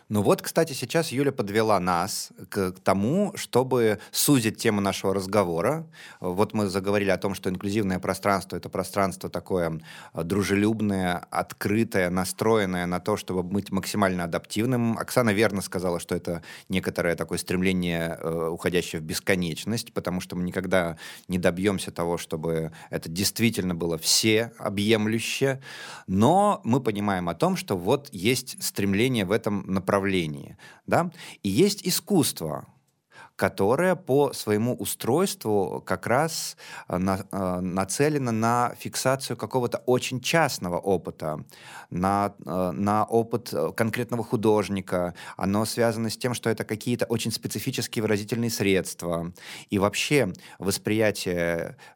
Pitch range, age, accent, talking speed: 95-120 Hz, 20-39, native, 120 wpm